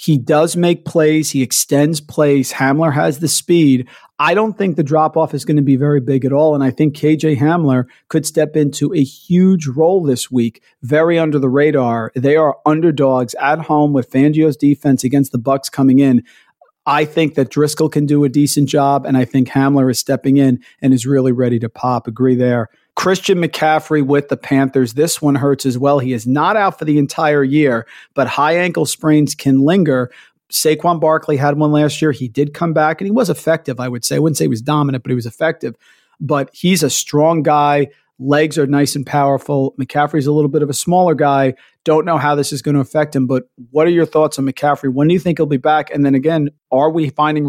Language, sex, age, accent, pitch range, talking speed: English, male, 40-59, American, 135-155 Hz, 220 wpm